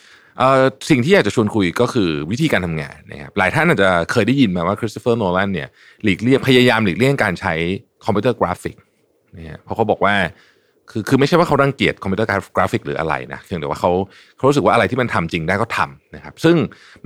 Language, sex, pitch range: Thai, male, 90-135 Hz